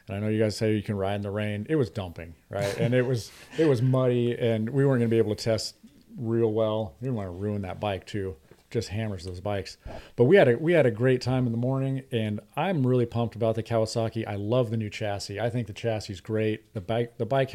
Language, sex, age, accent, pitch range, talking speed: English, male, 40-59, American, 105-120 Hz, 265 wpm